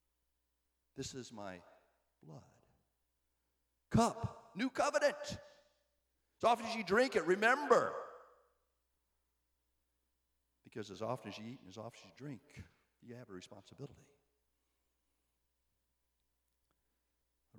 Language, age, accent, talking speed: English, 50-69, American, 105 wpm